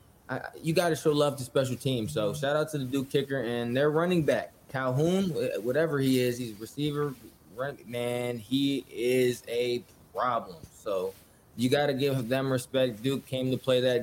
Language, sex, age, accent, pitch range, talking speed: English, male, 20-39, American, 125-155 Hz, 190 wpm